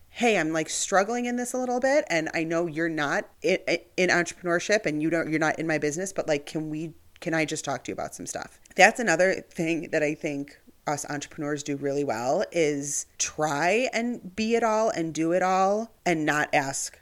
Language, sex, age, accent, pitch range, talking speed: English, female, 30-49, American, 145-200 Hz, 215 wpm